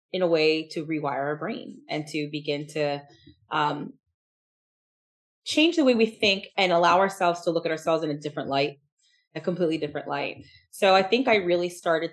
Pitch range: 150-185 Hz